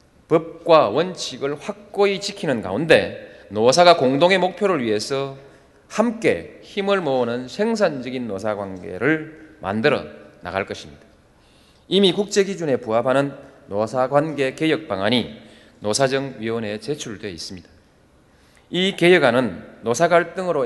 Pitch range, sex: 125-185 Hz, male